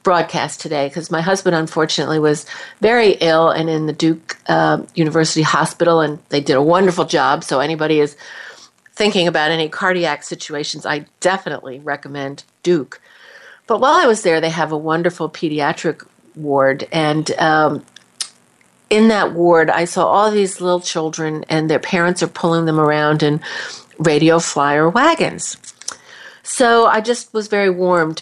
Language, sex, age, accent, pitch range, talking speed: English, female, 50-69, American, 155-180 Hz, 155 wpm